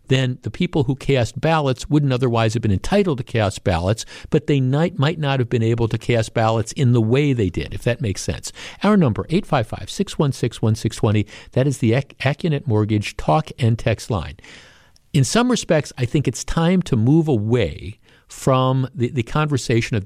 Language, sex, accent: English, male, American